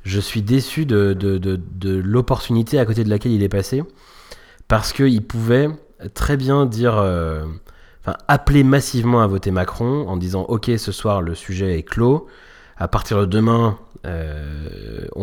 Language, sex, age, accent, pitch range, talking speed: French, male, 30-49, French, 95-125 Hz, 160 wpm